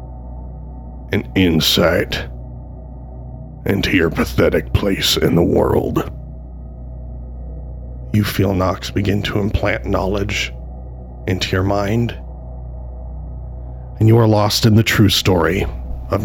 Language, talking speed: English, 105 wpm